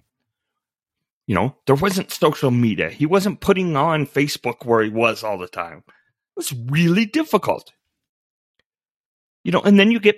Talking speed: 160 wpm